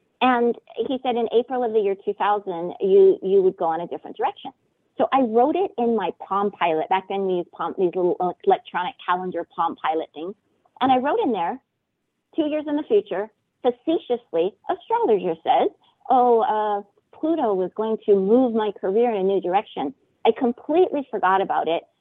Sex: female